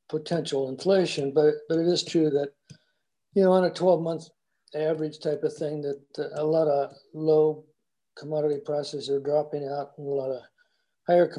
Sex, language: male, English